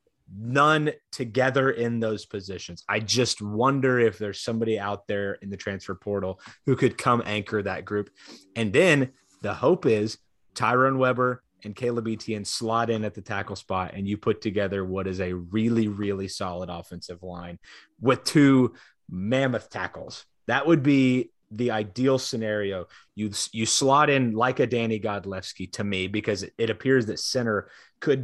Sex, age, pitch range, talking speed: male, 30-49, 100-125 Hz, 165 wpm